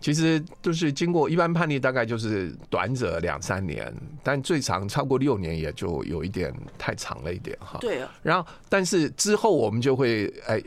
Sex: male